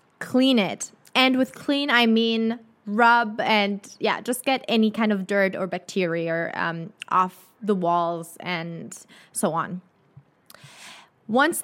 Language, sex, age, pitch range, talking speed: English, female, 20-39, 205-260 Hz, 135 wpm